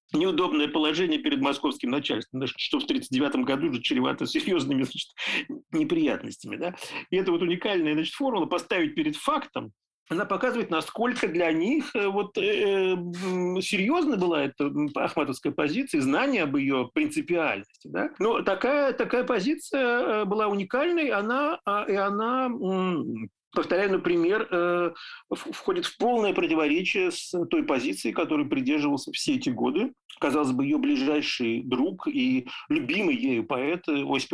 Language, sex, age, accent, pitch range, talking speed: Russian, male, 50-69, native, 180-300 Hz, 130 wpm